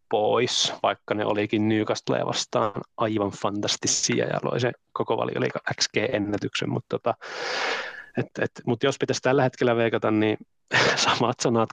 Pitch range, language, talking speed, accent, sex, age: 100-120 Hz, Finnish, 140 wpm, native, male, 30-49